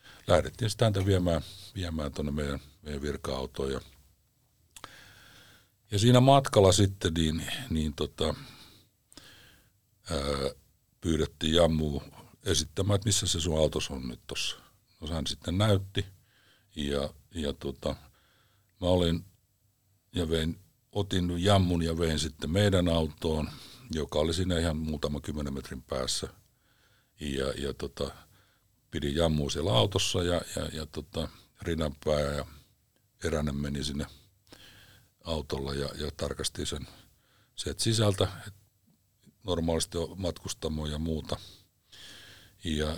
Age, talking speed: 60-79, 115 wpm